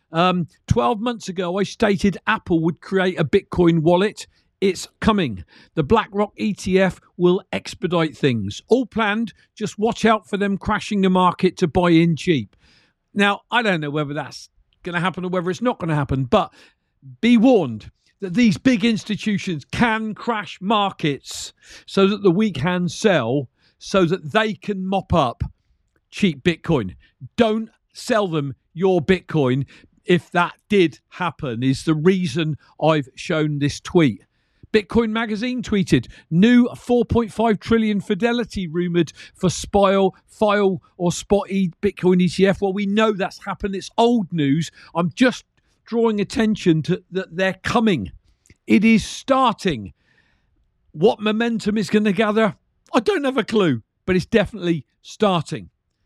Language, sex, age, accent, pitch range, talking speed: English, male, 50-69, British, 165-215 Hz, 150 wpm